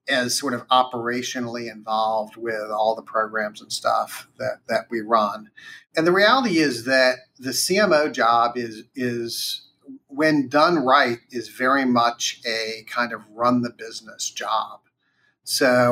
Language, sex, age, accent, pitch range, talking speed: English, male, 40-59, American, 115-130 Hz, 145 wpm